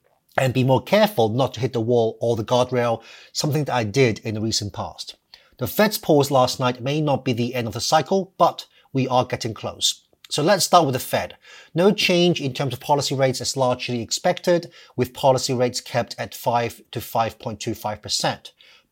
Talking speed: 195 wpm